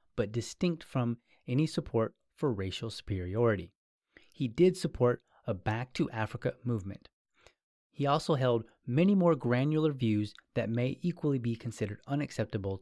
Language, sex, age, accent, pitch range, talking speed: English, male, 30-49, American, 105-135 Hz, 135 wpm